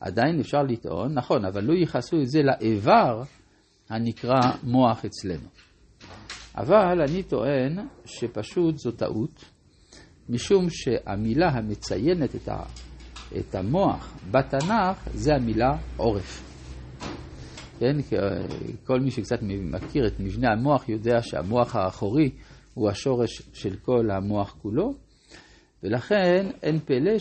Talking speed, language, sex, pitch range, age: 105 wpm, Hebrew, male, 105-150 Hz, 50-69